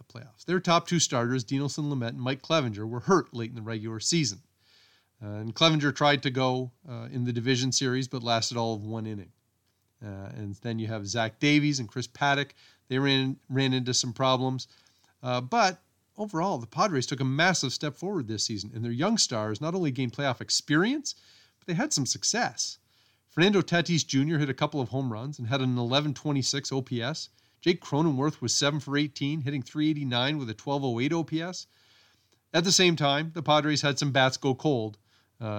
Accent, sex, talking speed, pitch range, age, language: American, male, 190 wpm, 115-145 Hz, 30-49, English